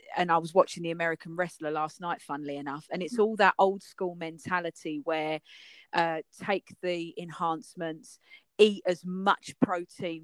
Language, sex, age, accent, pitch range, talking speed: English, female, 40-59, British, 170-220 Hz, 160 wpm